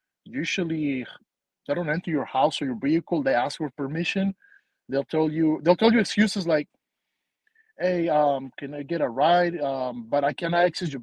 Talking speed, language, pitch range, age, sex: 185 wpm, English, 150-195 Hz, 20-39, male